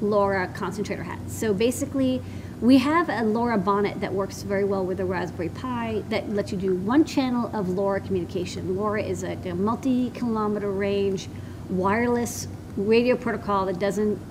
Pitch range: 190-235 Hz